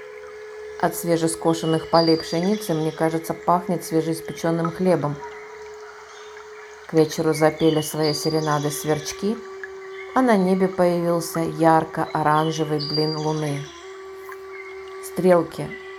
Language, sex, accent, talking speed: Russian, female, native, 85 wpm